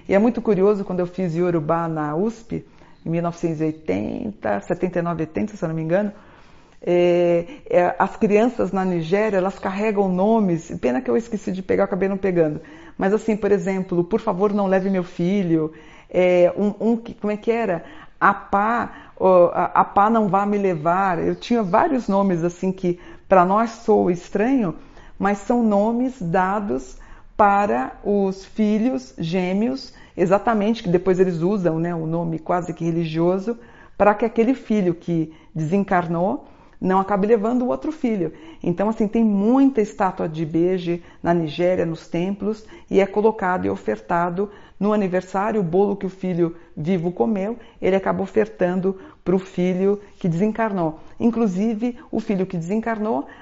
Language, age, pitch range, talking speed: Portuguese, 50-69, 175-215 Hz, 160 wpm